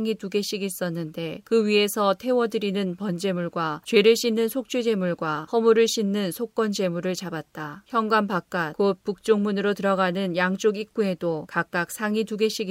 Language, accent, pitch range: Korean, native, 180-210 Hz